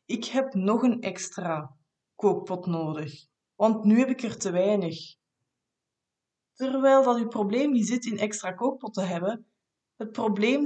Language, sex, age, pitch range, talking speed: Dutch, female, 20-39, 195-250 Hz, 145 wpm